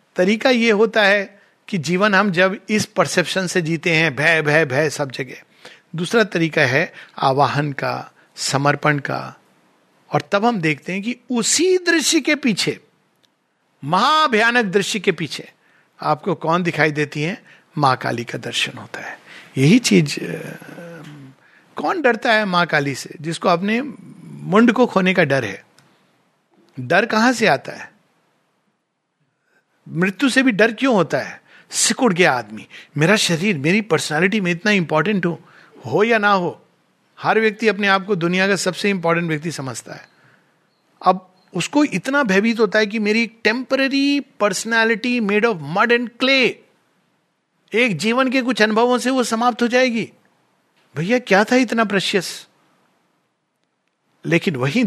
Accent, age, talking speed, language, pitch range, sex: native, 60-79, 150 wpm, Hindi, 160-230 Hz, male